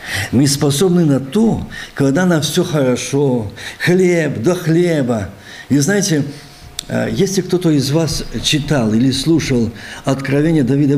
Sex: male